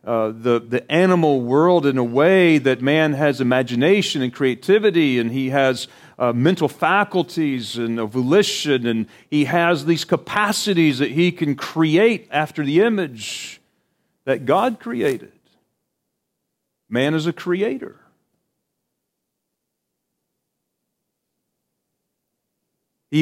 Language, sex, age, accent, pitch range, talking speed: English, male, 40-59, American, 130-175 Hz, 110 wpm